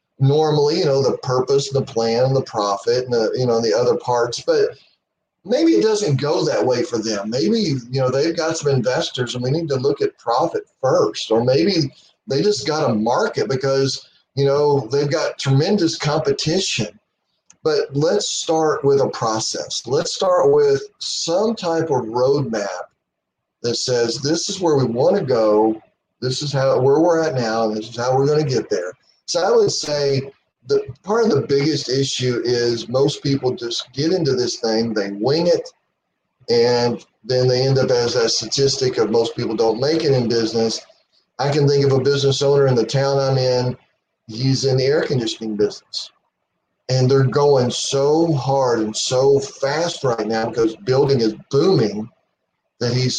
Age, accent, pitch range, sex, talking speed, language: 40-59, American, 125-160 Hz, male, 185 wpm, English